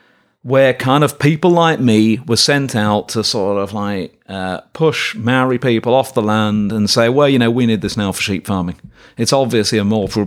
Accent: British